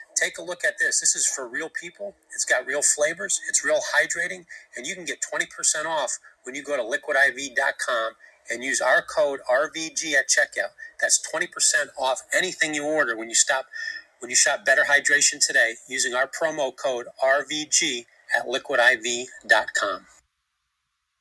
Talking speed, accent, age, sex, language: 160 wpm, American, 40-59, male, English